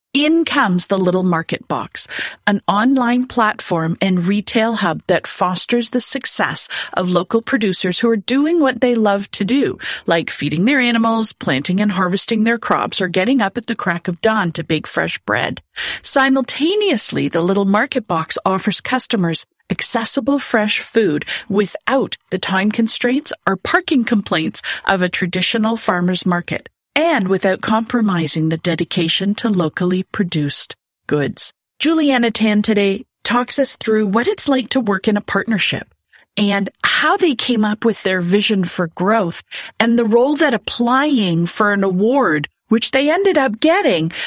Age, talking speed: 40-59, 155 wpm